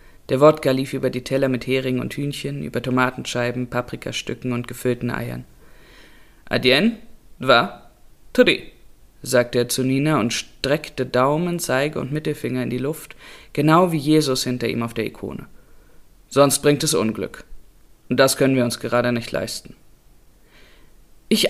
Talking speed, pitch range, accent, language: 150 wpm, 125-155 Hz, German, German